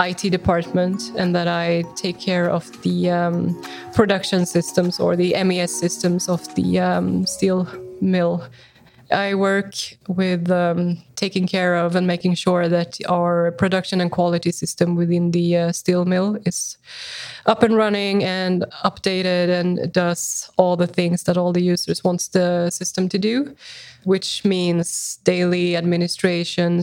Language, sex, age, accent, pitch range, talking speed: Swedish, female, 20-39, native, 175-190 Hz, 150 wpm